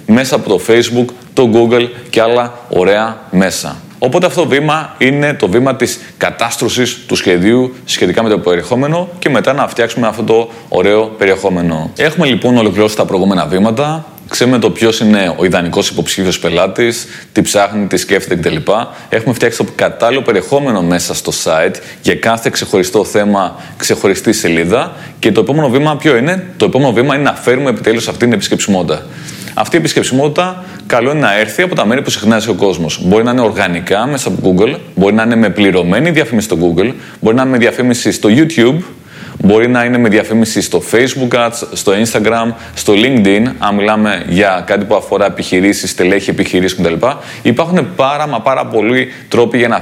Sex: male